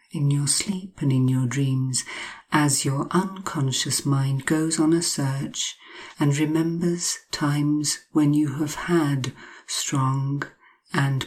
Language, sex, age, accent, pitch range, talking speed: English, female, 50-69, British, 135-170 Hz, 130 wpm